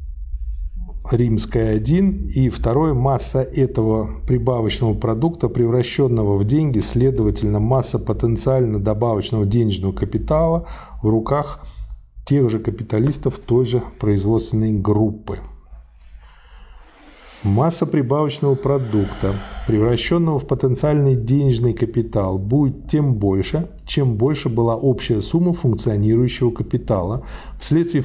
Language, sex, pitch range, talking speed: Russian, male, 105-135 Hz, 95 wpm